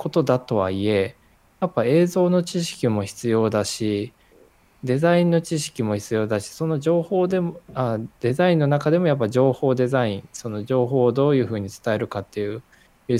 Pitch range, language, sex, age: 110-145 Hz, Japanese, male, 20-39